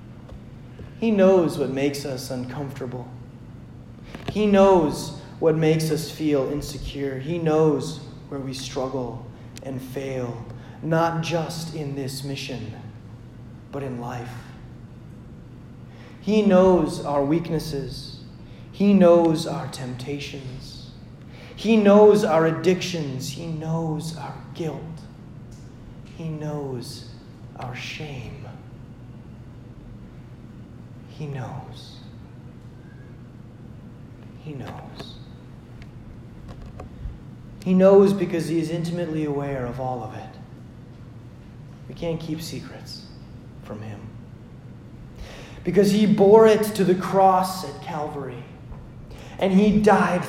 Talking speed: 95 wpm